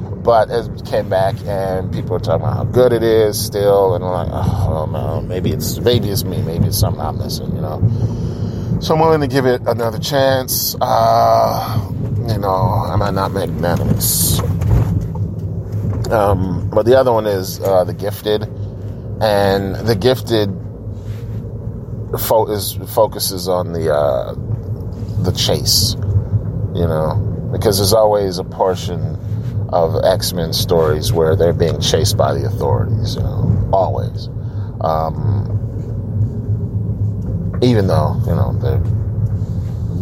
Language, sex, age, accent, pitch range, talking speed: English, male, 30-49, American, 95-115 Hz, 140 wpm